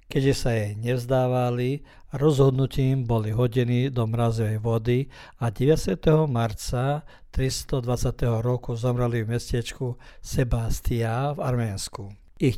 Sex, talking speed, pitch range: male, 105 wpm, 115-130 Hz